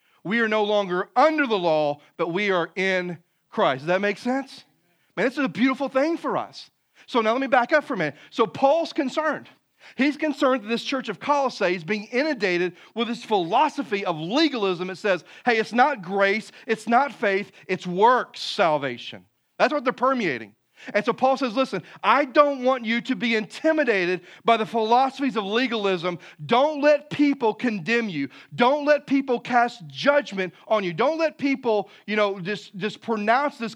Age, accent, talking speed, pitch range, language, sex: 40-59, American, 185 wpm, 185-260 Hz, English, male